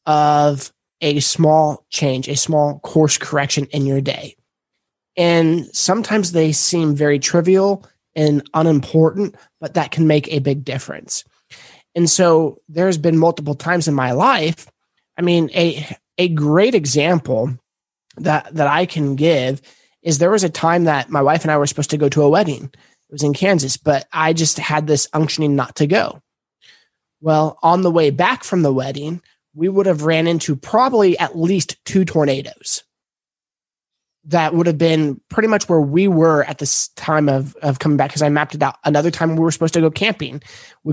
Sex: male